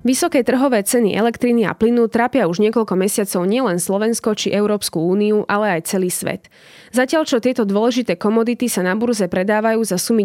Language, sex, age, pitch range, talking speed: Slovak, female, 20-39, 195-240 Hz, 175 wpm